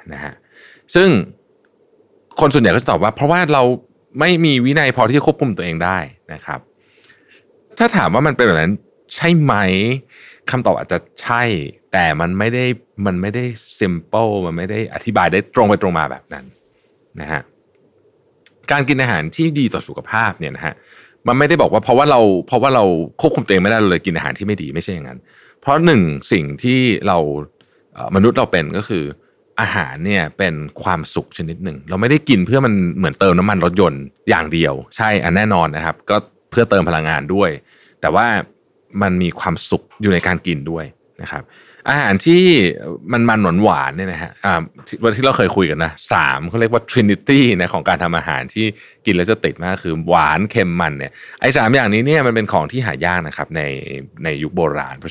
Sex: male